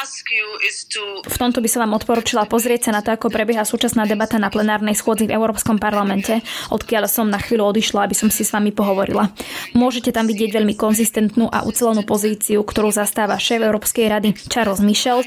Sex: female